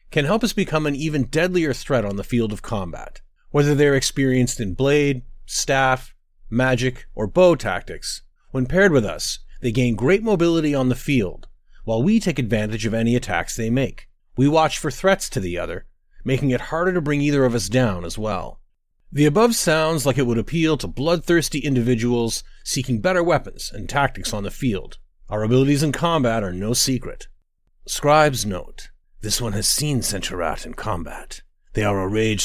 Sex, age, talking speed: male, 30-49, 185 wpm